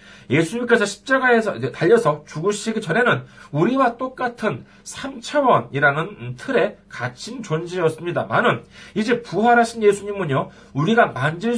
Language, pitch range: Korean, 140-230 Hz